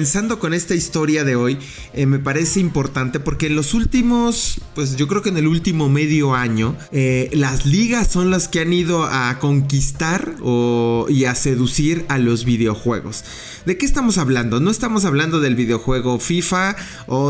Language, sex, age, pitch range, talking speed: English, male, 30-49, 125-165 Hz, 175 wpm